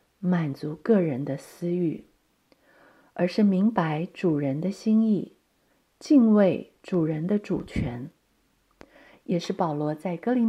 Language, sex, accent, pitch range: Chinese, female, native, 165-215 Hz